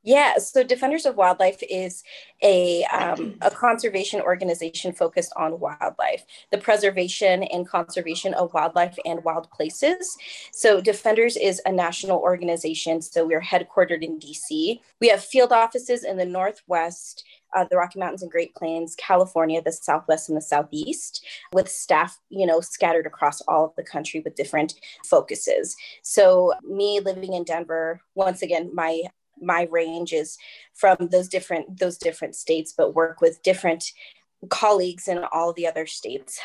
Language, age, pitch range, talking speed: English, 20-39, 165-210 Hz, 155 wpm